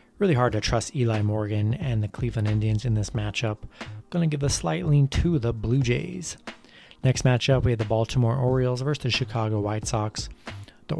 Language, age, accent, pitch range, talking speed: English, 30-49, American, 110-130 Hz, 195 wpm